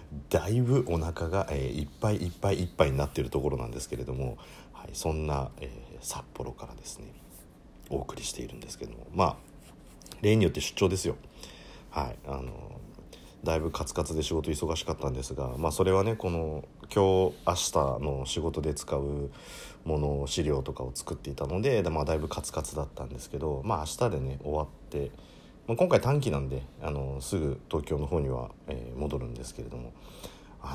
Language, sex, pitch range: Japanese, male, 70-90 Hz